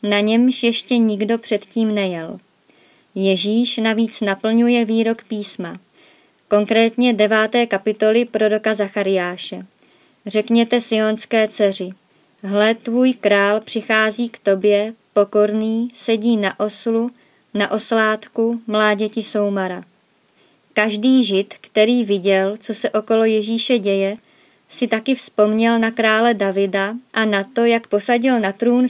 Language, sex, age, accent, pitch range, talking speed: Czech, male, 20-39, native, 200-225 Hz, 115 wpm